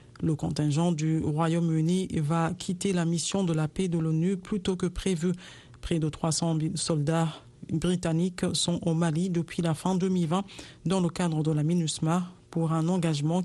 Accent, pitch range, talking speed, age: French, 165-185 Hz, 170 wpm, 50-69